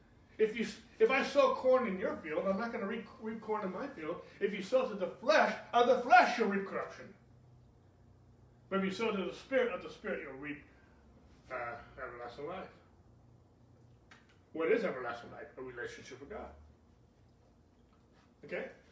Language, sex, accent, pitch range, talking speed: English, male, American, 125-205 Hz, 175 wpm